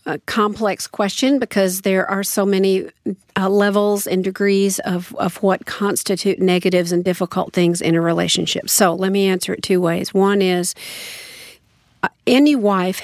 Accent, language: American, English